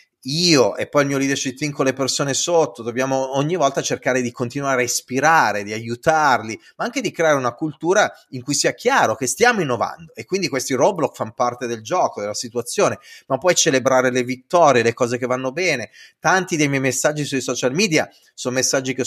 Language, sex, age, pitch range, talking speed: Italian, male, 30-49, 120-150 Hz, 200 wpm